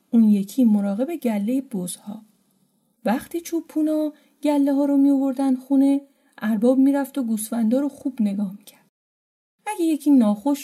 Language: Persian